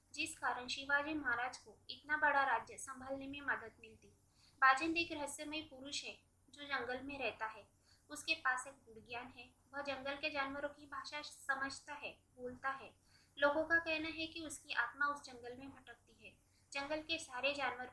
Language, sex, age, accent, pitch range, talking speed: Hindi, female, 20-39, native, 250-295 Hz, 175 wpm